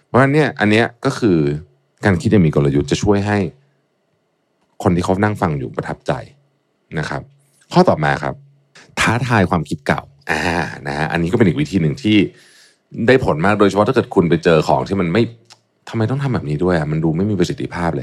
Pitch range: 85-135 Hz